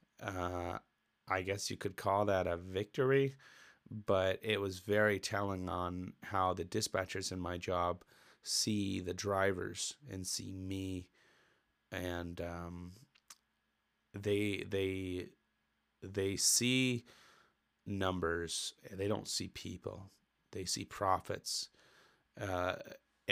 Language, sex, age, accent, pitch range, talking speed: English, male, 30-49, American, 90-100 Hz, 110 wpm